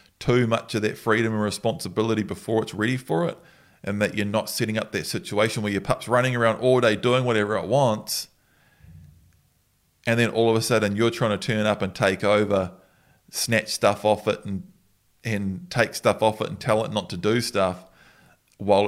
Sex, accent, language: male, Australian, English